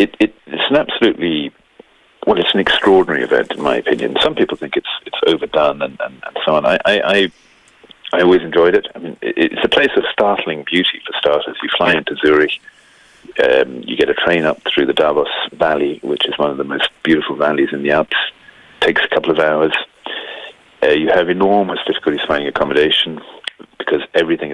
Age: 40-59